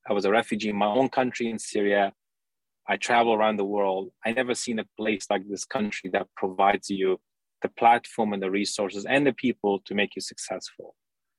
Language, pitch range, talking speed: English, 100-125 Hz, 200 wpm